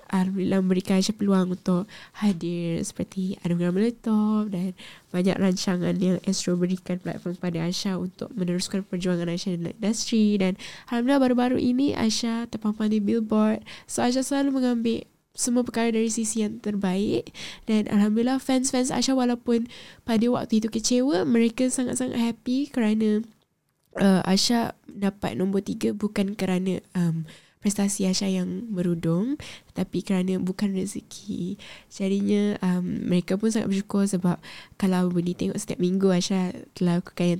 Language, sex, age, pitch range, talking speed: Malay, female, 10-29, 185-230 Hz, 140 wpm